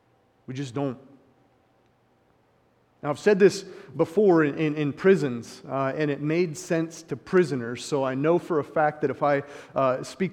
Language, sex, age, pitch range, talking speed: English, male, 30-49, 135-175 Hz, 175 wpm